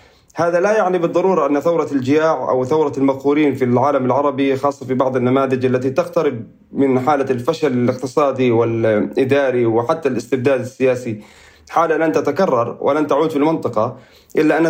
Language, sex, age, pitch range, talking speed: Arabic, male, 30-49, 130-155 Hz, 145 wpm